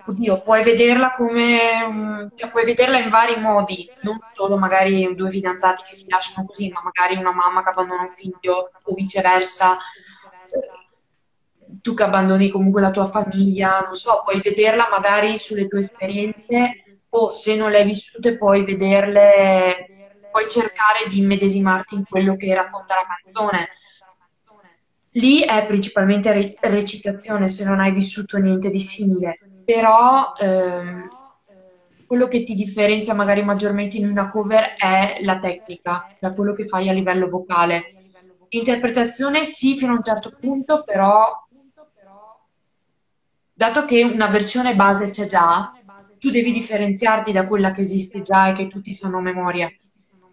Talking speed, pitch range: 145 wpm, 190-220 Hz